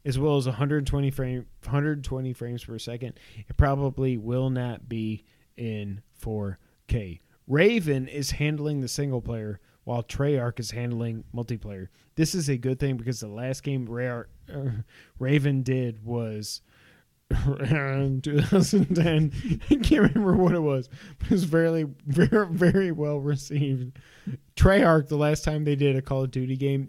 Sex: male